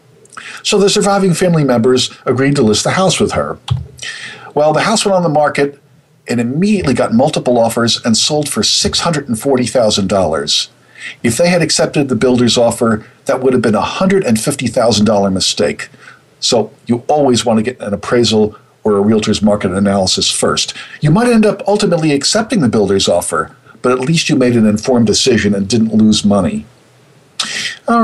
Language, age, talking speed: English, 50-69, 165 wpm